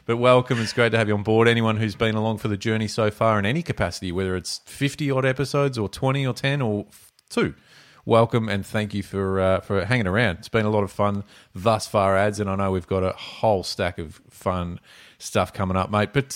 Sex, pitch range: male, 95-120 Hz